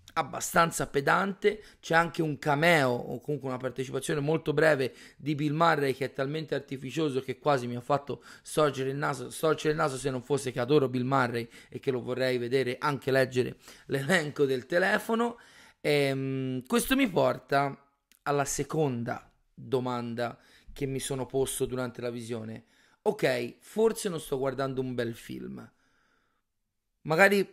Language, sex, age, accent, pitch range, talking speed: Italian, male, 30-49, native, 130-160 Hz, 155 wpm